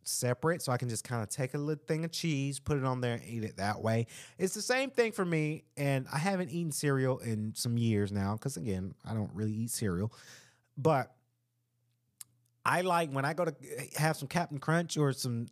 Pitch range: 120-155 Hz